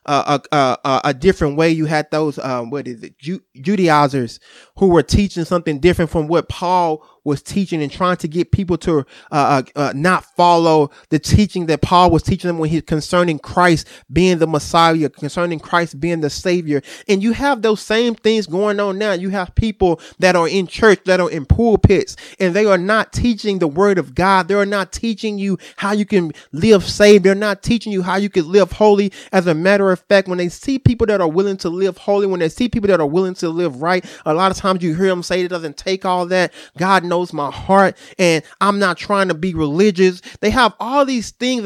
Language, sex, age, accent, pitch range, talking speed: English, male, 30-49, American, 165-205 Hz, 225 wpm